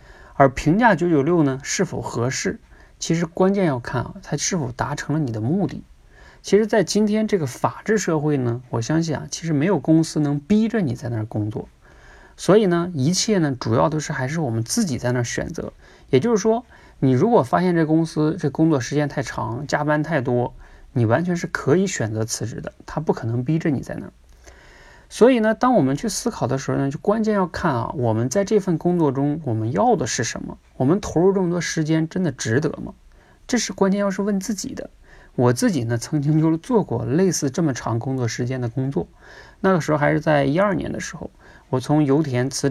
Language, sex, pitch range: Chinese, male, 130-185 Hz